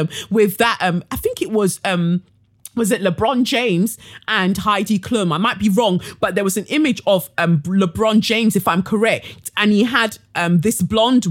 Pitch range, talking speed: 170-235 Hz, 195 wpm